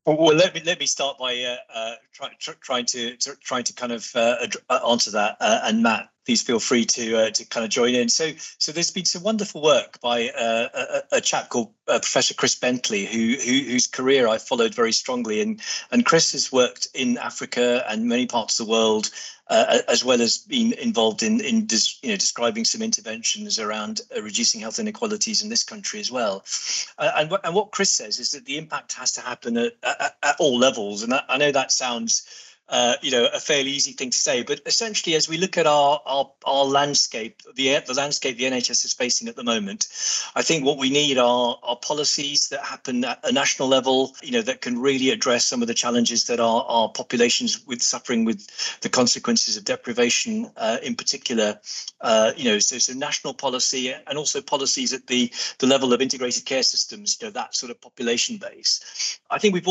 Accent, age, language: British, 40-59, English